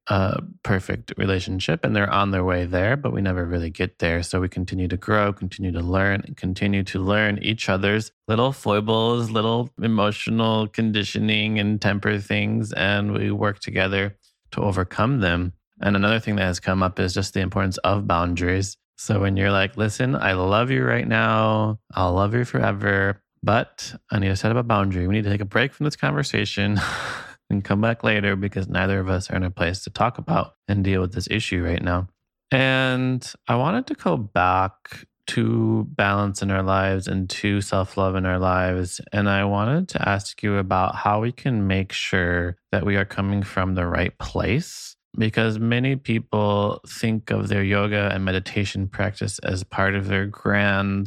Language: English